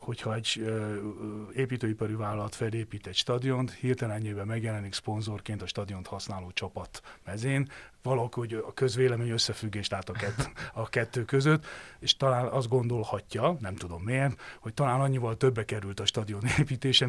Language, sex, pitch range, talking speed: Hungarian, male, 100-125 Hz, 150 wpm